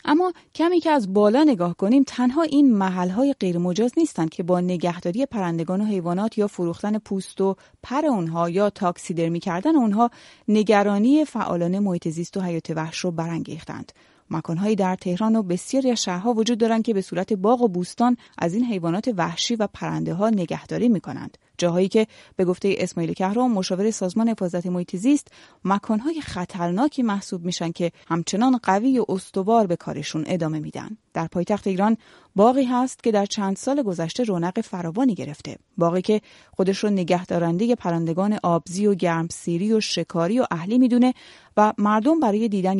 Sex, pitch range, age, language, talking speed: female, 175-230 Hz, 30-49, Persian, 165 wpm